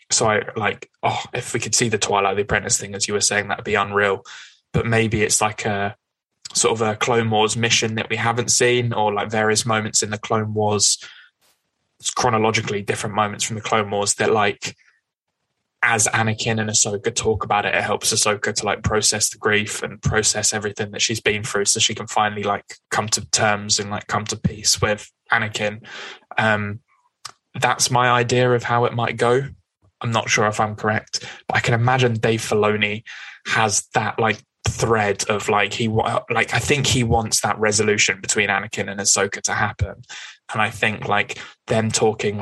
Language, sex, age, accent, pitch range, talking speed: English, male, 10-29, British, 105-115 Hz, 195 wpm